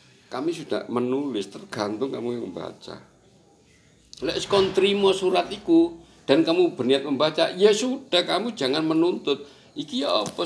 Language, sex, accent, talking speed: Indonesian, male, native, 120 wpm